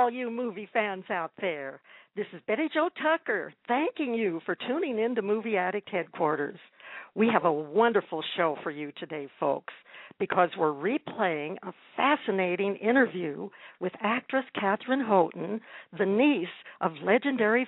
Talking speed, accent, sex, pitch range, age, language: 145 wpm, American, female, 180-240 Hz, 60-79, English